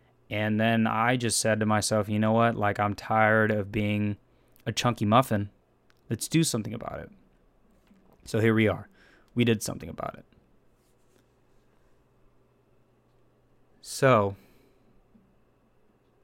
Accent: American